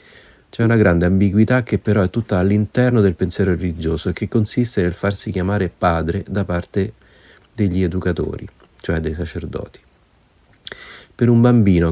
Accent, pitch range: native, 85-105 Hz